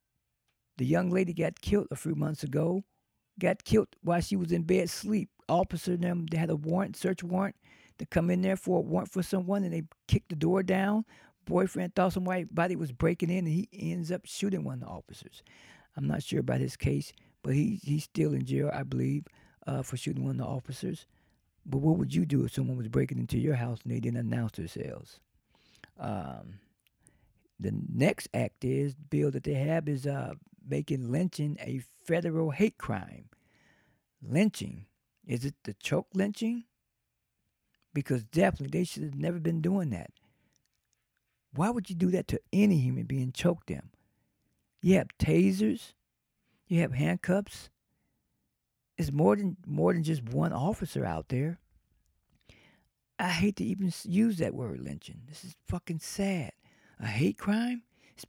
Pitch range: 135-185 Hz